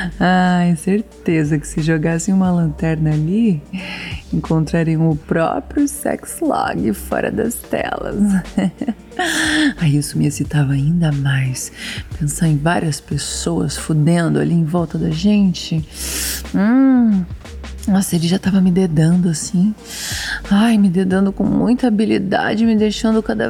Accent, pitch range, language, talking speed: Brazilian, 170-245 Hz, Portuguese, 130 wpm